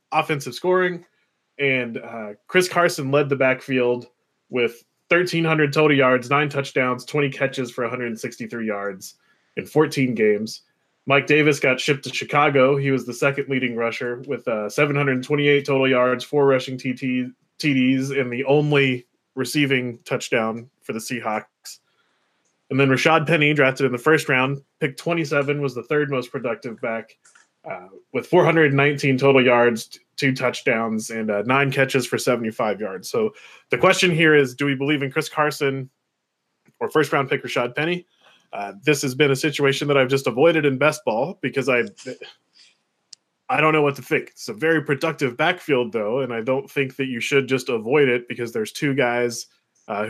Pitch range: 125-150 Hz